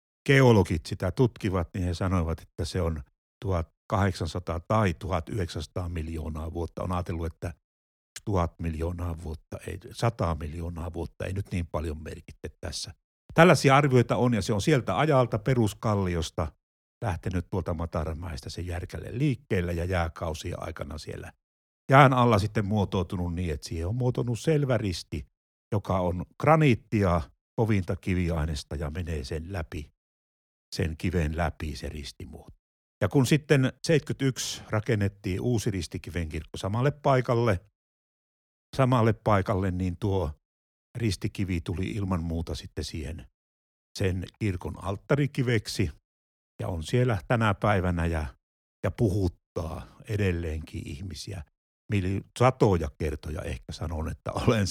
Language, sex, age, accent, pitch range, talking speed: Finnish, male, 60-79, native, 80-110 Hz, 125 wpm